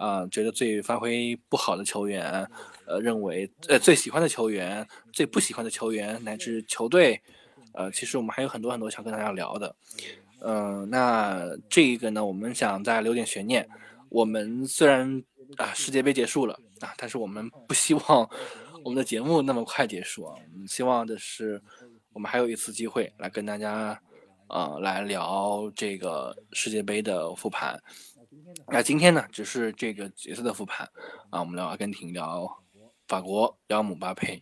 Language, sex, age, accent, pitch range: Chinese, male, 20-39, native, 105-130 Hz